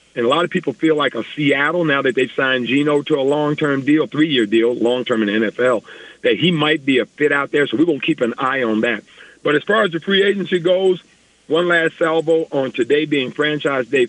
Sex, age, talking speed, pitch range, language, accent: male, 50-69, 245 wpm, 135-185 Hz, English, American